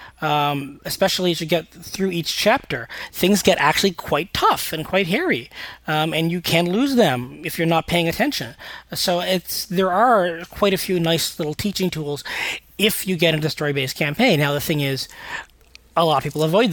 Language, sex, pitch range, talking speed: English, male, 145-185 Hz, 195 wpm